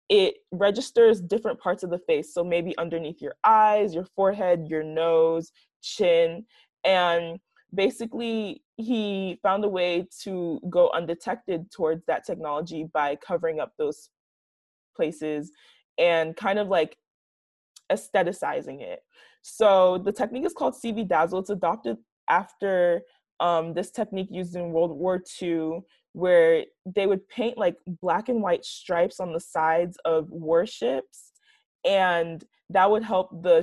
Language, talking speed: English, 135 wpm